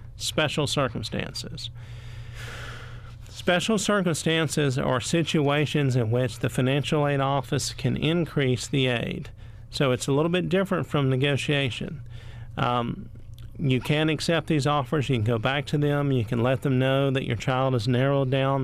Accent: American